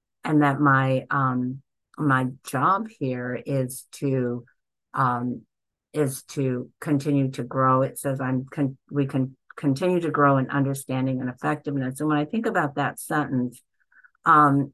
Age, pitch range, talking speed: 50-69, 130-150 Hz, 145 wpm